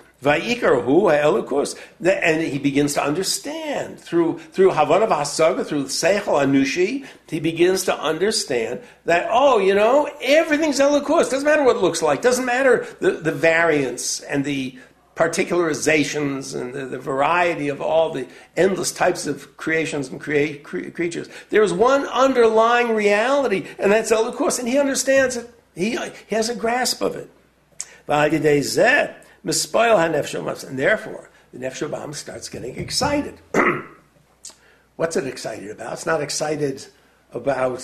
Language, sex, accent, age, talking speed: English, male, American, 60-79, 140 wpm